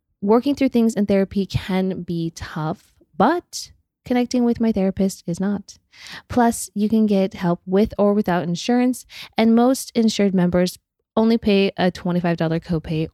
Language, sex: English, female